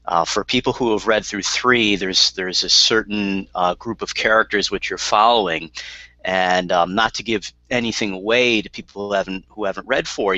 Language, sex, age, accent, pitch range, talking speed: English, male, 40-59, American, 90-110 Hz, 195 wpm